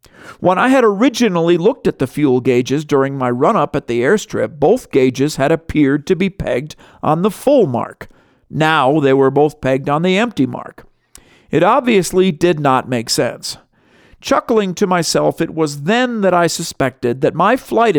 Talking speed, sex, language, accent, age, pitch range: 175 wpm, male, English, American, 50-69, 135-190 Hz